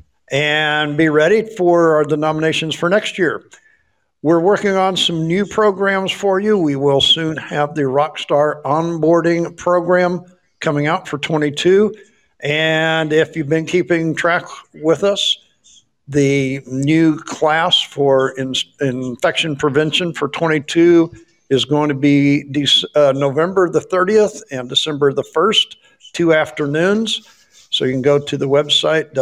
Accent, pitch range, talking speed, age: American, 140-175 Hz, 135 wpm, 60-79